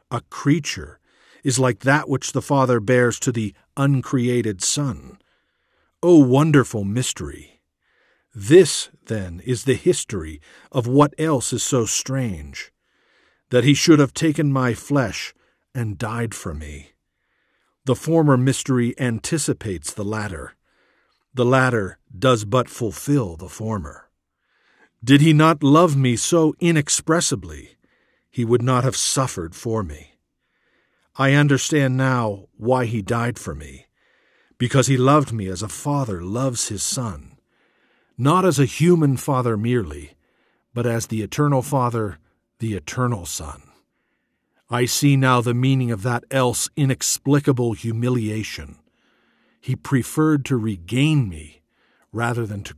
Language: English